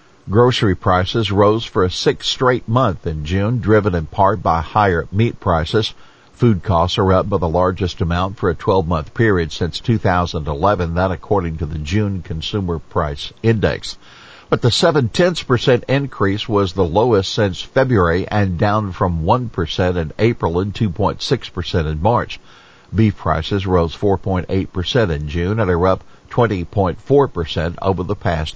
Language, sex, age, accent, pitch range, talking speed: English, male, 50-69, American, 85-115 Hz, 160 wpm